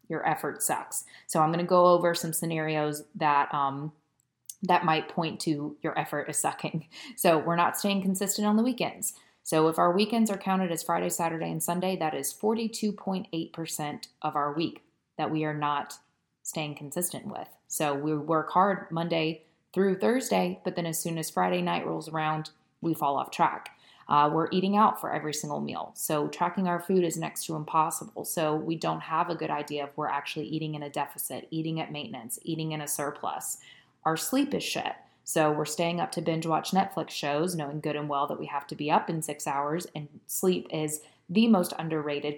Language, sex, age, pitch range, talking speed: English, female, 20-39, 150-180 Hz, 200 wpm